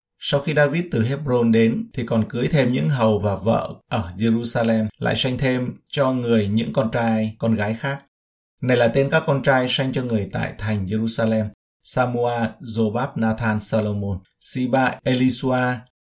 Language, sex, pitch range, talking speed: Vietnamese, male, 110-130 Hz, 170 wpm